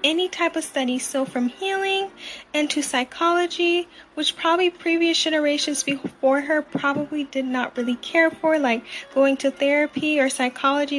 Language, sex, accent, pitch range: English, female, American, 275-335 Hz